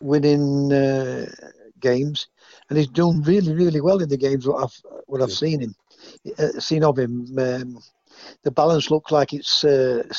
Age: 50-69